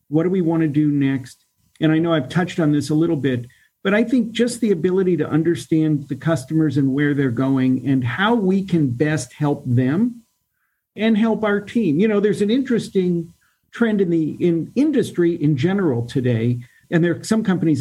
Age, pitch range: 50-69, 145-190 Hz